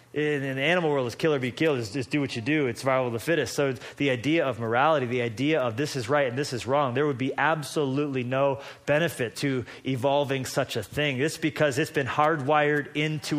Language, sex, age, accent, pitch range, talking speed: English, male, 30-49, American, 140-165 Hz, 235 wpm